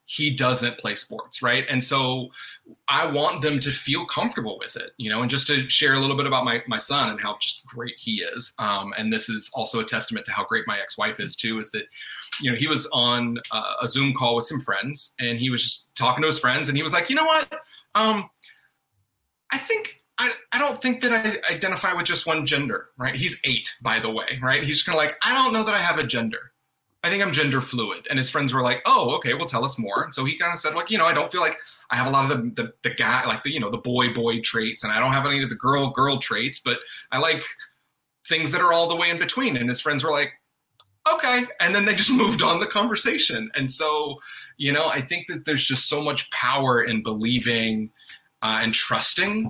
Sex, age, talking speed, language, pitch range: male, 30-49, 250 wpm, English, 120-170 Hz